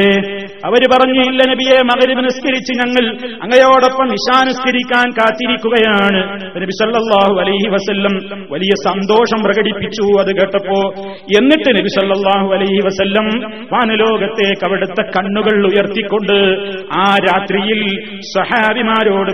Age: 30-49